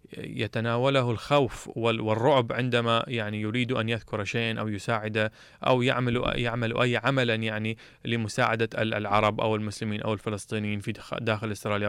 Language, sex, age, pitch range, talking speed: English, male, 20-39, 105-125 Hz, 130 wpm